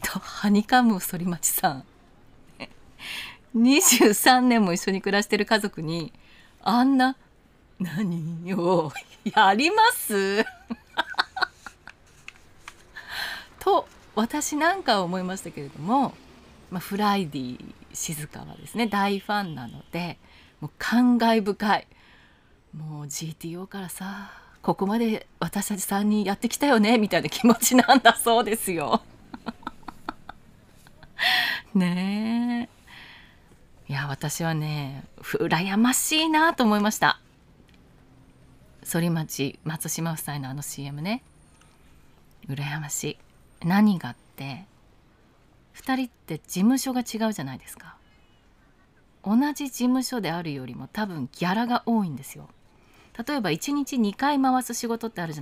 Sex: female